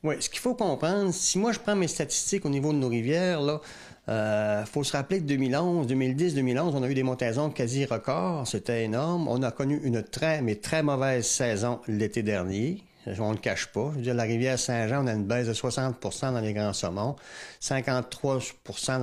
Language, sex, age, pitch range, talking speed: French, male, 60-79, 115-145 Hz, 210 wpm